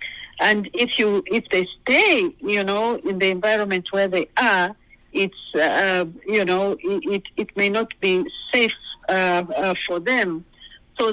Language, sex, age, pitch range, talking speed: English, female, 50-69, 185-220 Hz, 160 wpm